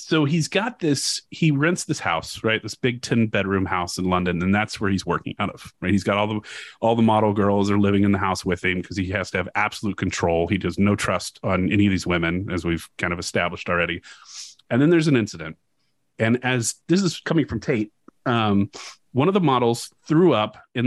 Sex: male